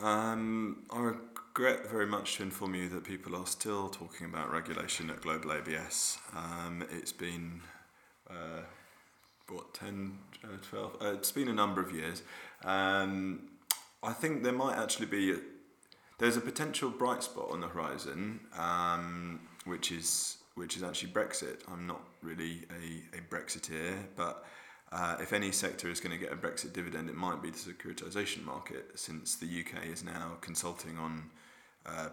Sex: male